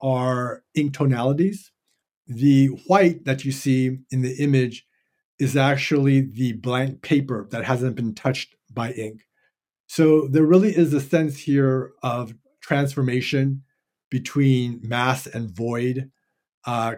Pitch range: 120-135 Hz